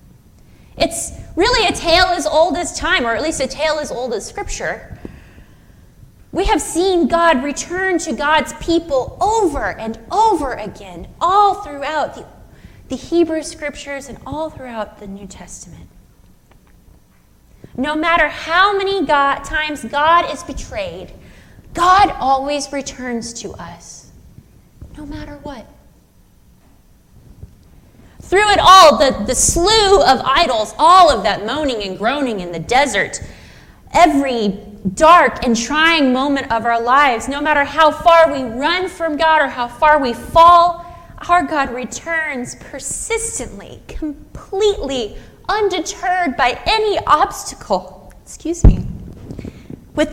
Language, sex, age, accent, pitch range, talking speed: English, female, 20-39, American, 265-345 Hz, 125 wpm